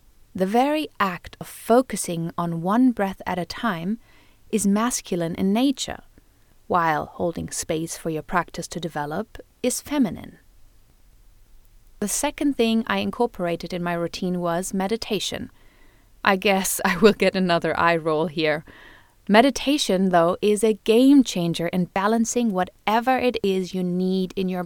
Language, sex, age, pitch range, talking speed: English, female, 30-49, 180-230 Hz, 145 wpm